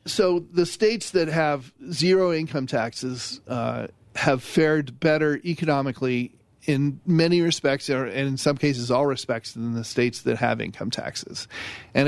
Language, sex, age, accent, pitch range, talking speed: English, male, 40-59, American, 120-145 Hz, 150 wpm